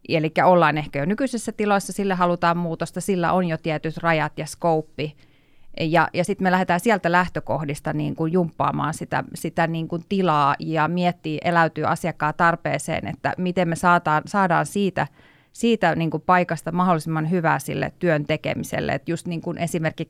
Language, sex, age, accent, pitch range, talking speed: Finnish, female, 30-49, native, 155-180 Hz, 155 wpm